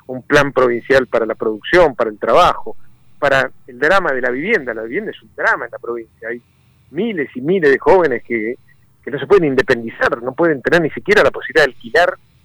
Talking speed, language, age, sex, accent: 210 wpm, Spanish, 50-69, male, Argentinian